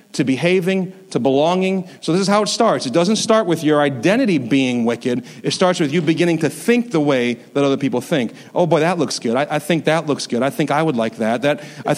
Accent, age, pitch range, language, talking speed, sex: American, 40-59, 130-175 Hz, English, 250 wpm, male